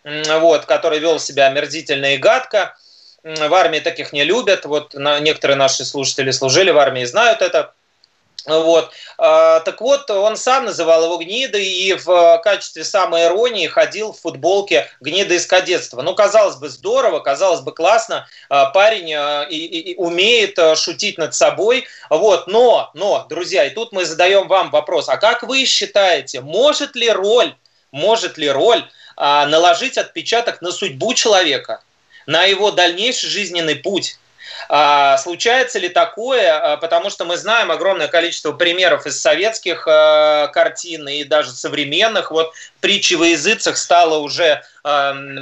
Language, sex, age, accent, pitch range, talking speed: Russian, male, 30-49, native, 150-215 Hz, 145 wpm